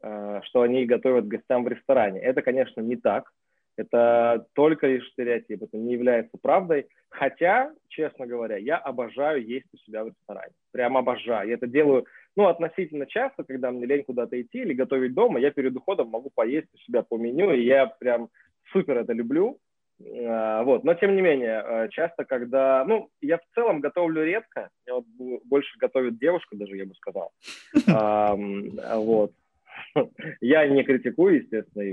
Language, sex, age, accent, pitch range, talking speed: Russian, male, 20-39, native, 115-145 Hz, 165 wpm